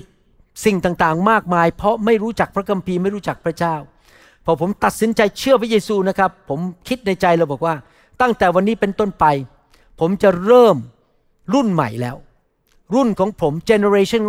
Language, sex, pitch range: Thai, male, 160-205 Hz